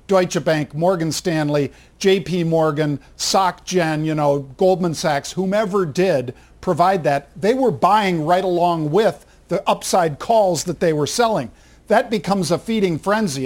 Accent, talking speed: American, 150 wpm